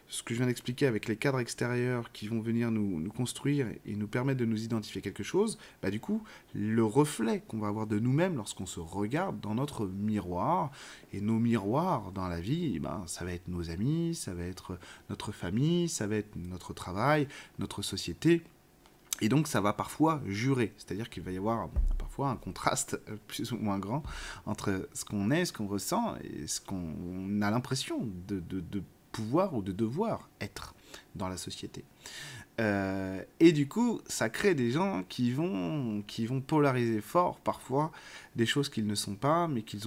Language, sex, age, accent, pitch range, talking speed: French, male, 30-49, French, 100-135 Hz, 195 wpm